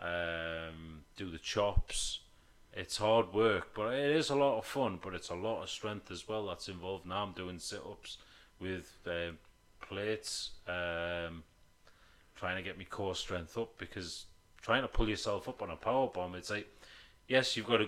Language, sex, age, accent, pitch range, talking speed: English, male, 30-49, British, 90-110 Hz, 180 wpm